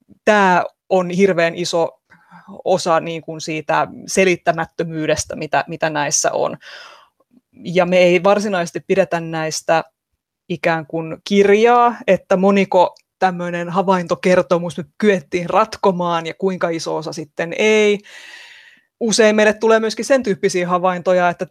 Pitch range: 170-200 Hz